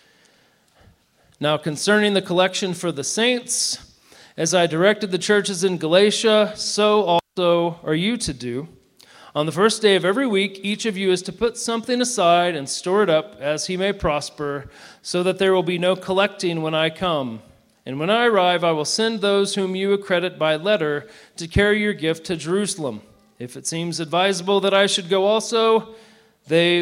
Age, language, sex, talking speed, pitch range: 40-59, English, male, 185 wpm, 155-200 Hz